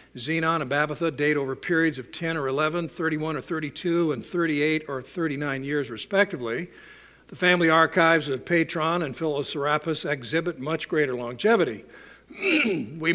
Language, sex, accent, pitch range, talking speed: English, male, American, 145-175 Hz, 140 wpm